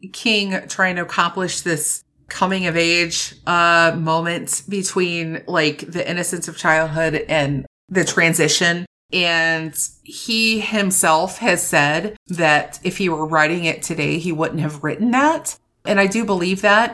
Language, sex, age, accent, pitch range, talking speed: English, female, 30-49, American, 150-185 Hz, 145 wpm